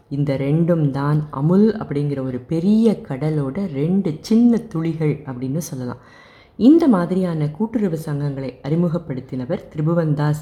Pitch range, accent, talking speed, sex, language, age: 145-205 Hz, native, 105 wpm, female, Tamil, 30-49